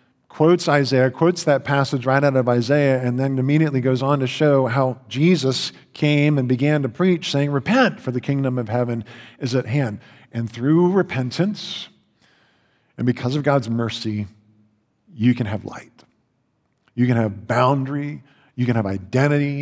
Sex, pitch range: male, 115-145 Hz